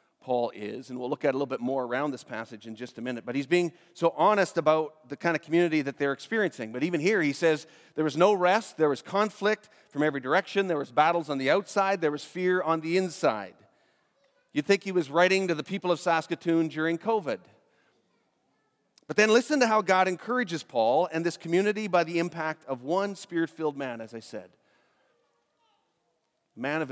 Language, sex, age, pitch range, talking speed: English, male, 40-59, 150-185 Hz, 205 wpm